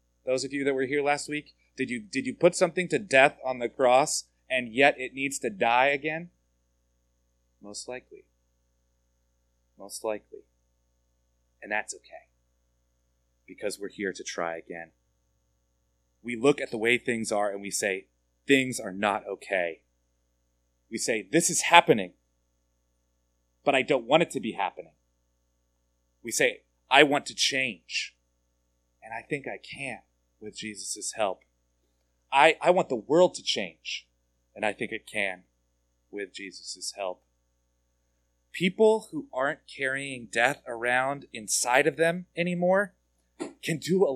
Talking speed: 145 wpm